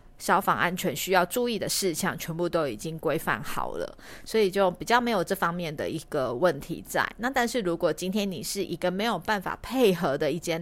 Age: 30-49